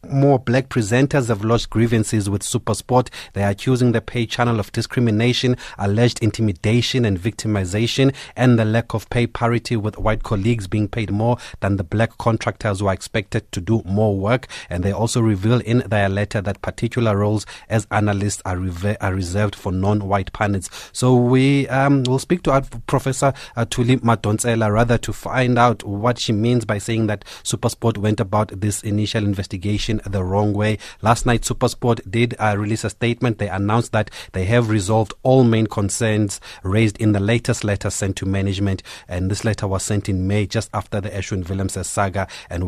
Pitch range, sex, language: 100-120 Hz, male, English